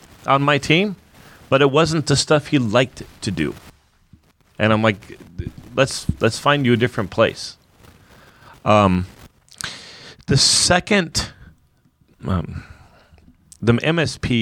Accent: American